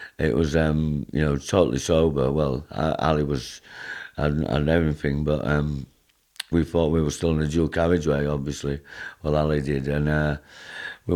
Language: English